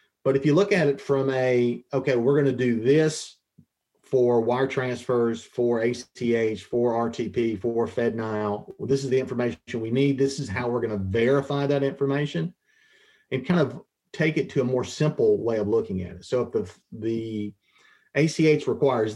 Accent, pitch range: American, 115-145 Hz